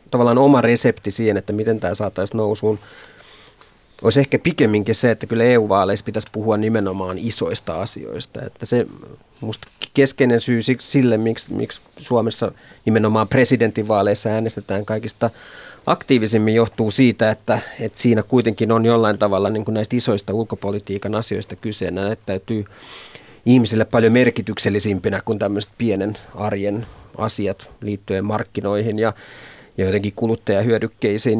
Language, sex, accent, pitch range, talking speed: Finnish, male, native, 105-120 Hz, 120 wpm